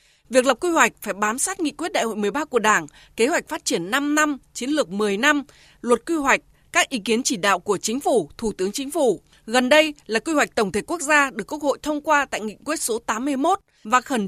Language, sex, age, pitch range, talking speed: Vietnamese, female, 20-39, 220-305 Hz, 250 wpm